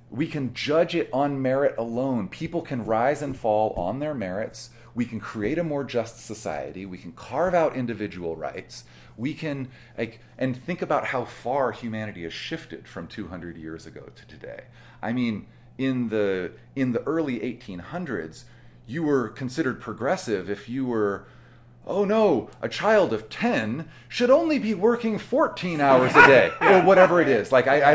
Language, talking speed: English, 170 wpm